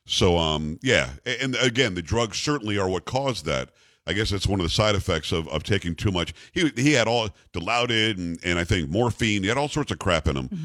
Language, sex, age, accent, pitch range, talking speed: English, male, 50-69, American, 95-135 Hz, 240 wpm